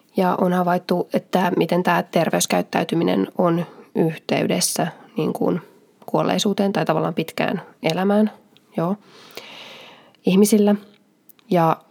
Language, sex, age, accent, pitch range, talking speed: Finnish, female, 20-39, native, 175-215 Hz, 95 wpm